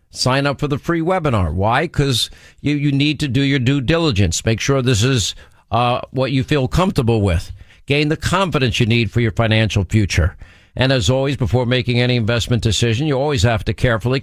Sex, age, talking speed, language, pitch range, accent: male, 50-69, 205 wpm, English, 110-140 Hz, American